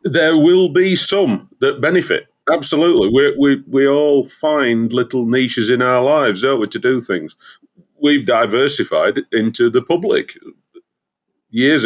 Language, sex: English, male